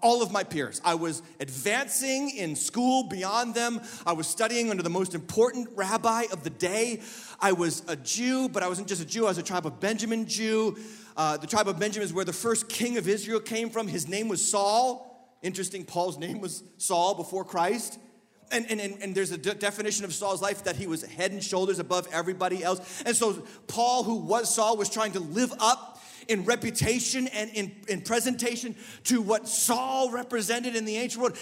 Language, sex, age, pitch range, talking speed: English, male, 30-49, 200-275 Hz, 210 wpm